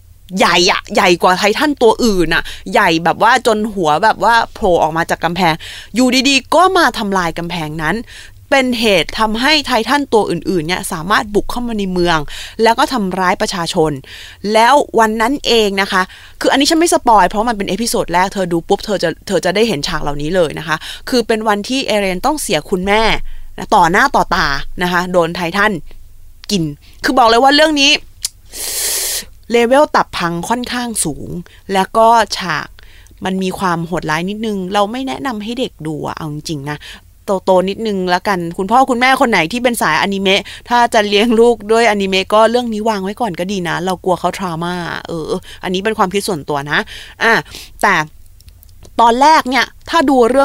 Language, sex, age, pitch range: Thai, female, 20-39, 175-240 Hz